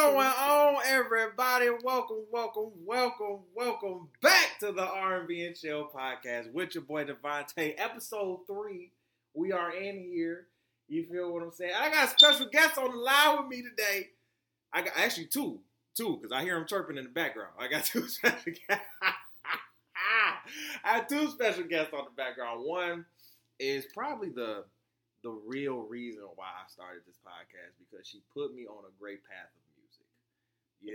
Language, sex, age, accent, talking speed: English, male, 20-39, American, 165 wpm